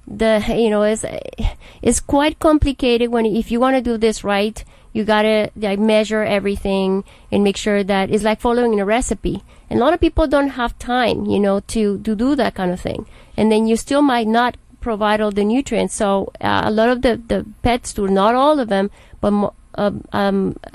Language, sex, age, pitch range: English, female, 30-49, 190-220 Hz